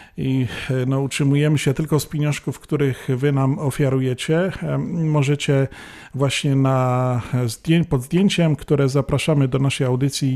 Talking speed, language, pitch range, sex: 120 wpm, Polish, 125-155 Hz, male